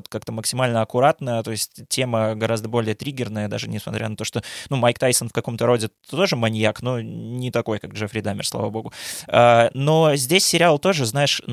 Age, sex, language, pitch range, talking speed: 20-39, male, Russian, 110-135 Hz, 180 wpm